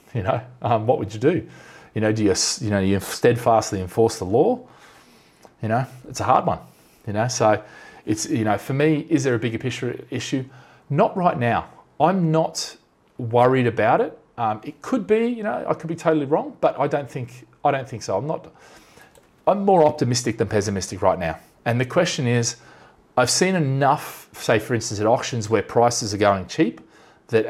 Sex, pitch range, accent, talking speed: male, 110-150 Hz, Australian, 200 wpm